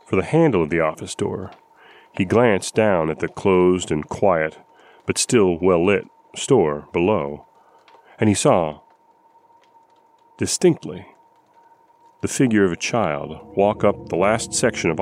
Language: English